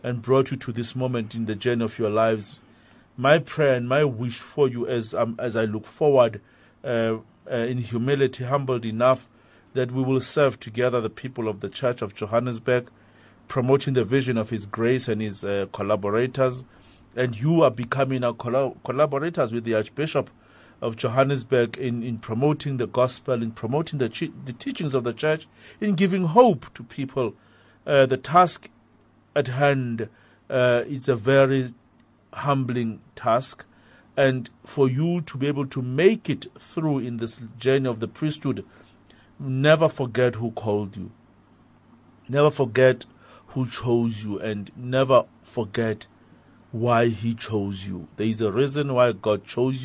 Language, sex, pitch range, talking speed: English, male, 115-135 Hz, 165 wpm